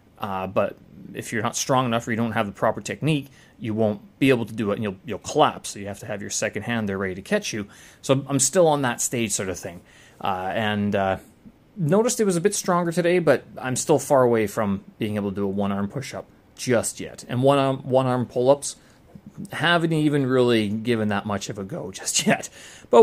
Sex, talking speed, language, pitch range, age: male, 240 wpm, English, 105-140 Hz, 30-49